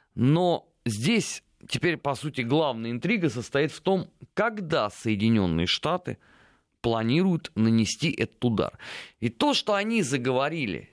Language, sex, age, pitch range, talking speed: Russian, male, 30-49, 115-175 Hz, 120 wpm